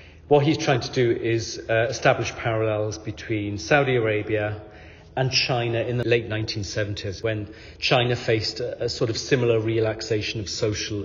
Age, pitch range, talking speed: 40-59, 100-120 Hz, 160 wpm